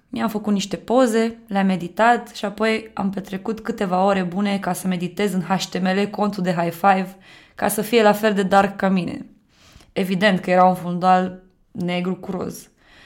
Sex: female